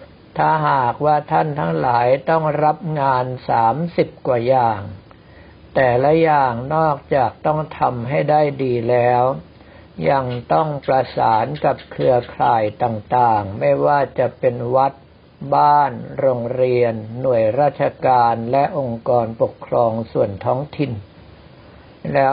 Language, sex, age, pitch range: Thai, male, 60-79, 115-140 Hz